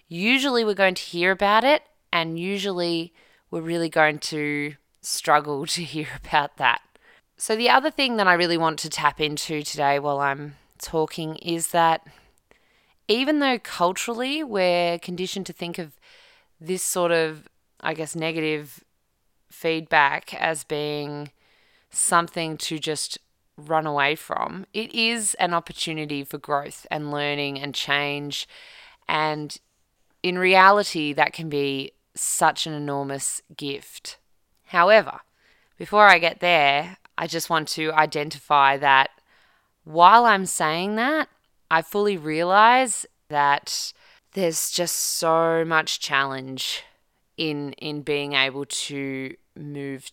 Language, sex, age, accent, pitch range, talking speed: English, female, 20-39, Australian, 145-180 Hz, 130 wpm